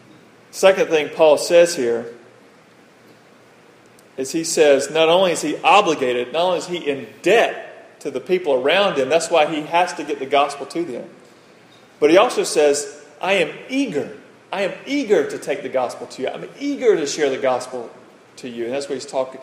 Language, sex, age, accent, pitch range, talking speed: English, male, 40-59, American, 140-200 Hz, 195 wpm